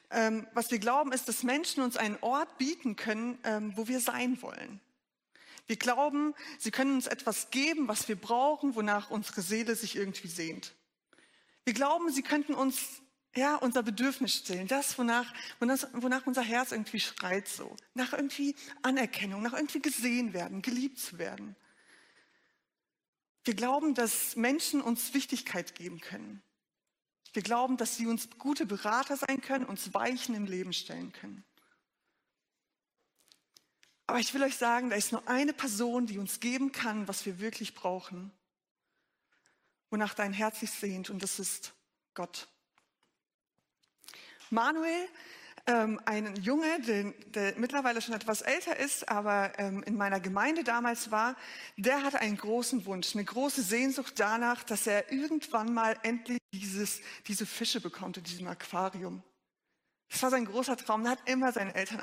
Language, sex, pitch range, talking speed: German, female, 210-265 Hz, 155 wpm